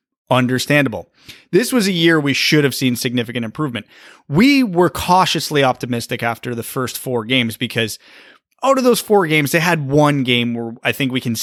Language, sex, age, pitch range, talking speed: English, male, 30-49, 120-155 Hz, 185 wpm